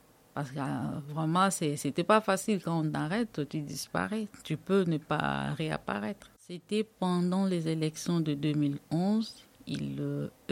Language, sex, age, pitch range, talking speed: French, female, 50-69, 145-175 Hz, 150 wpm